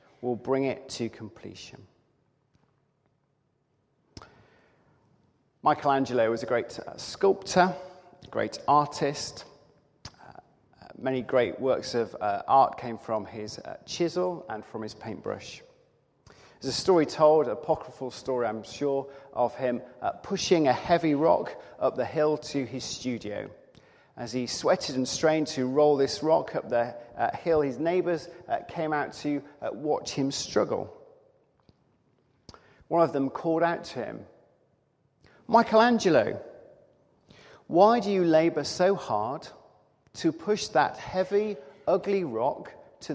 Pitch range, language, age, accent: 130-170 Hz, English, 40-59, British